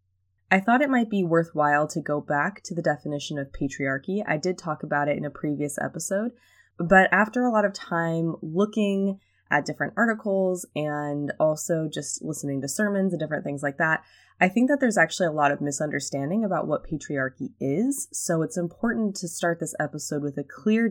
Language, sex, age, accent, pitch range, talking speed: English, female, 20-39, American, 145-190 Hz, 190 wpm